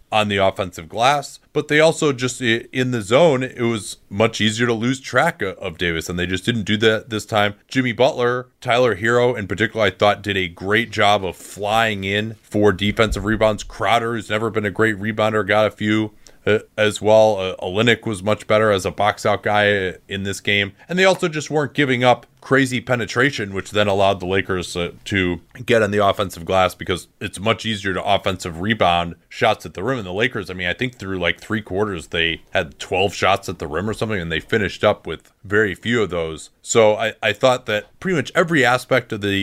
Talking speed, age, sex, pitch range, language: 220 wpm, 30-49, male, 100-120 Hz, English